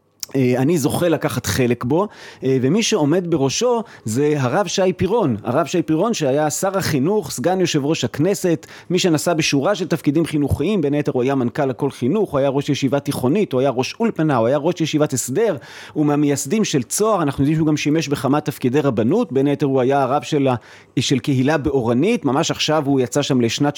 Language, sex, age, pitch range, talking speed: Hebrew, male, 30-49, 135-175 Hz, 190 wpm